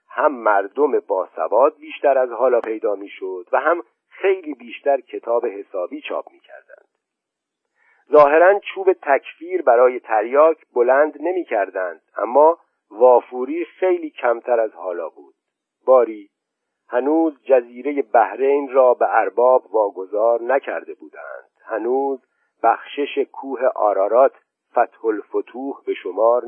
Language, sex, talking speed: Persian, male, 110 wpm